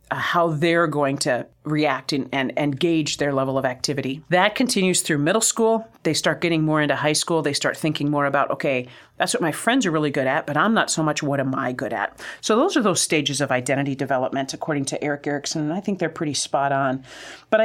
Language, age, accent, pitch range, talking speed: English, 40-59, American, 145-180 Hz, 235 wpm